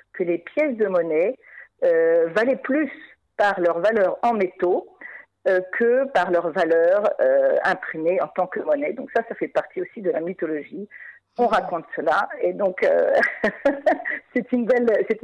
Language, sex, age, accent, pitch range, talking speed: French, female, 50-69, French, 185-300 Hz, 170 wpm